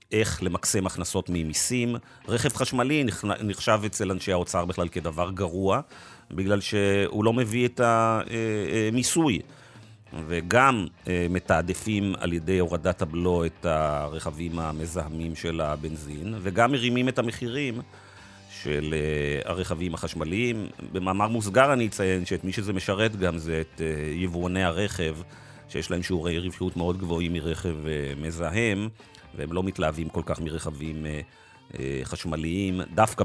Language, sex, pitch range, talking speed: Hebrew, male, 80-105 Hz, 125 wpm